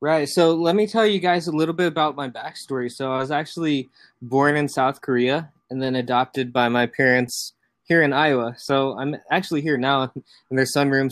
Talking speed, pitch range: 205 wpm, 120-145 Hz